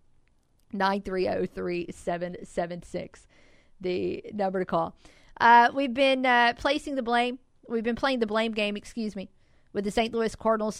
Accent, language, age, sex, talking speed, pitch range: American, English, 40-59, female, 140 wpm, 185-230 Hz